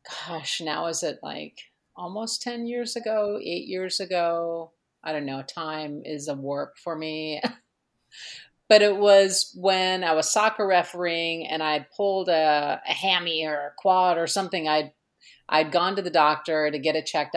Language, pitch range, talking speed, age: English, 150-185 Hz, 175 wpm, 40-59